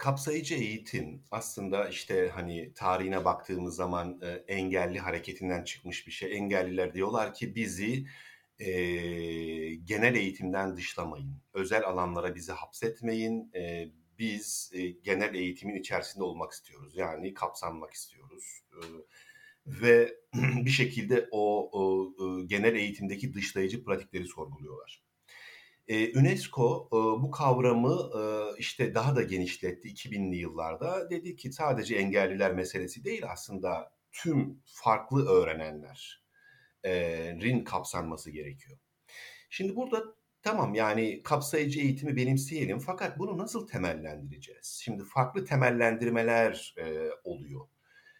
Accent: native